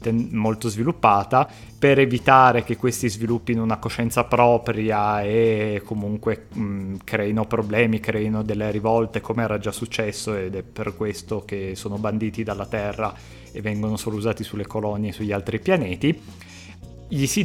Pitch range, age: 105-120 Hz, 30-49